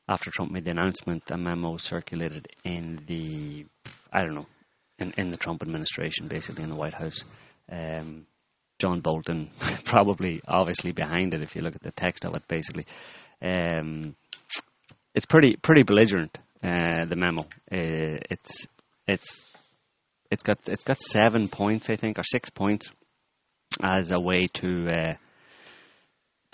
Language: English